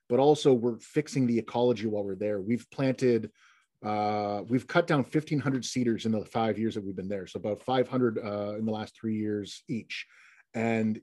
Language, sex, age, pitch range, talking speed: English, male, 30-49, 110-130 Hz, 195 wpm